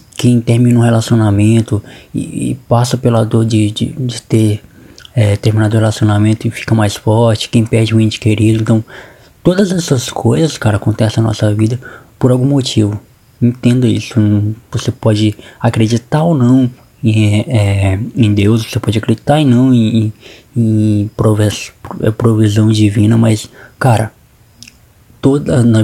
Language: Portuguese